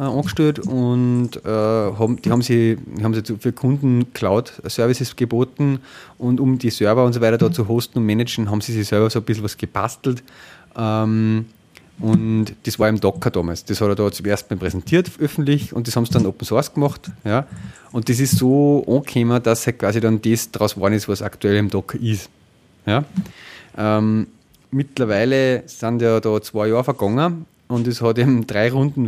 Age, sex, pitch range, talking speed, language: 30-49, male, 105-130 Hz, 190 wpm, English